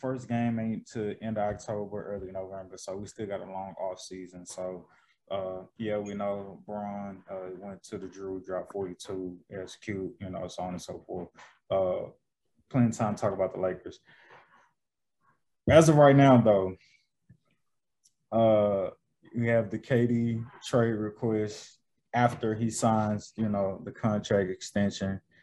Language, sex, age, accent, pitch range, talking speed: English, male, 20-39, American, 95-115 Hz, 155 wpm